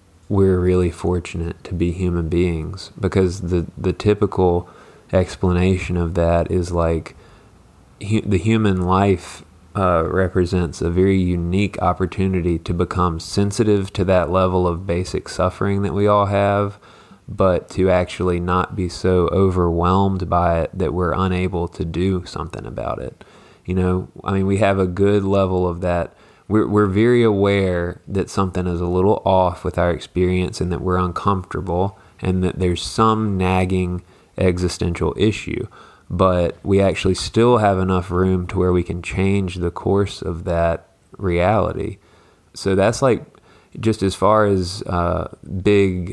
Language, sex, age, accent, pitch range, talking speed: English, male, 20-39, American, 90-100 Hz, 150 wpm